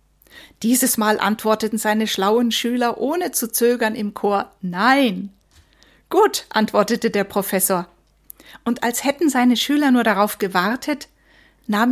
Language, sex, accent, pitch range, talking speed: German, female, German, 200-255 Hz, 125 wpm